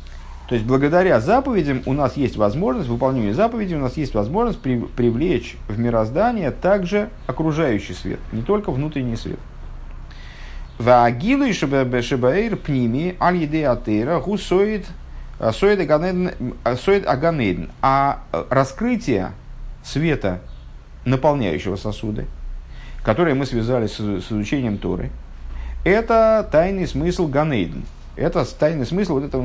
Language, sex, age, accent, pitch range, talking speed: Russian, male, 50-69, native, 95-155 Hz, 95 wpm